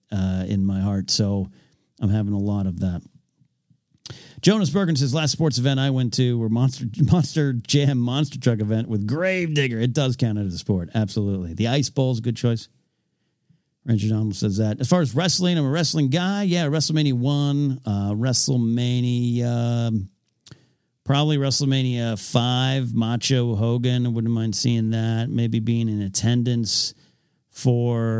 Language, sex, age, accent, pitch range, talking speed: English, male, 50-69, American, 110-145 Hz, 165 wpm